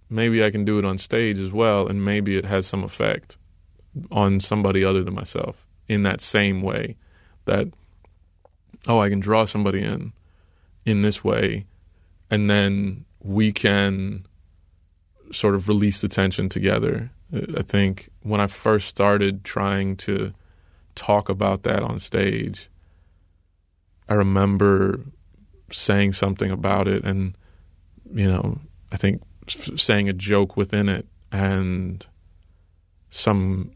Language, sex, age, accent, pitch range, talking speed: English, male, 20-39, American, 85-100 Hz, 135 wpm